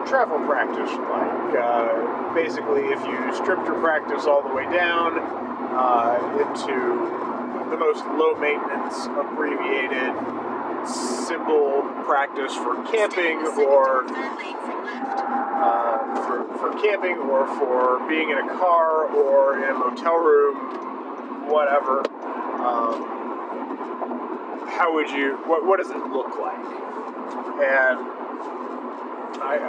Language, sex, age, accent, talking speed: English, male, 30-49, American, 110 wpm